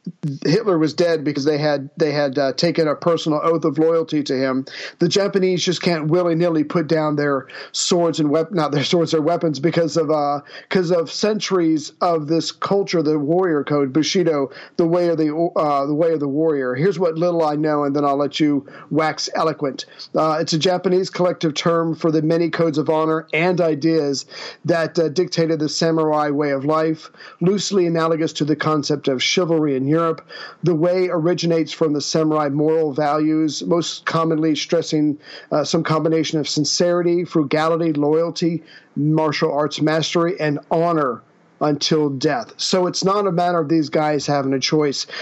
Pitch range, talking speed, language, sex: 150-170 Hz, 180 wpm, English, male